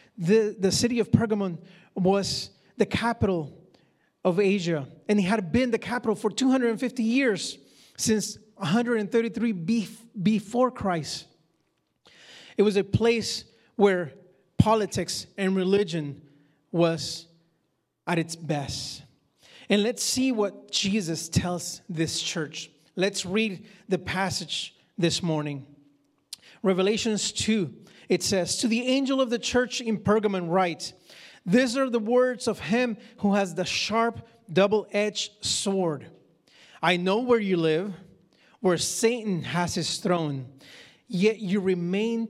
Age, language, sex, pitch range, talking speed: 30-49, English, male, 170-220 Hz, 125 wpm